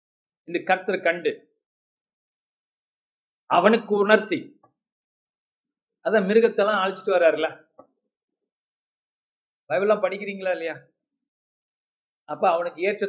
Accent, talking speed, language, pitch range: native, 75 wpm, Tamil, 180-225 Hz